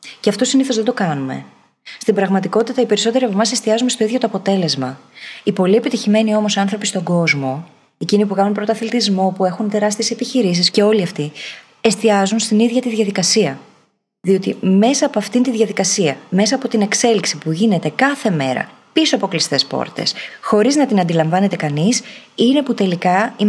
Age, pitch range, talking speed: 20-39, 175-230 Hz, 170 wpm